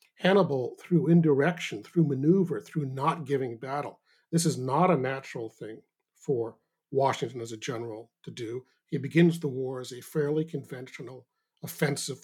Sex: male